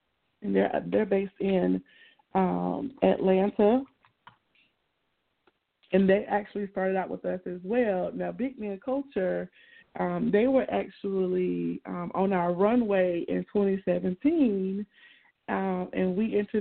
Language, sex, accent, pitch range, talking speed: English, female, American, 180-210 Hz, 110 wpm